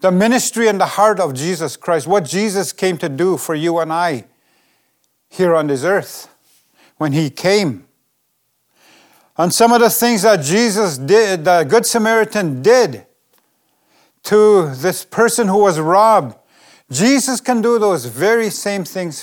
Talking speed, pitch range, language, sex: 155 wpm, 175-220 Hz, English, male